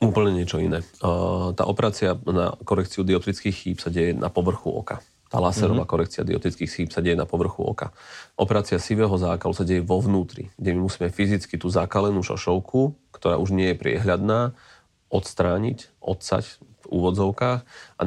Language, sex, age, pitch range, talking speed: Slovak, male, 40-59, 90-100 Hz, 160 wpm